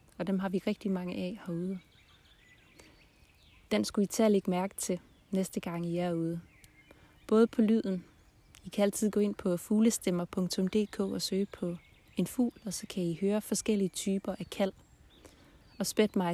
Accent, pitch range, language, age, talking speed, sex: native, 175-205 Hz, Danish, 30-49, 170 wpm, female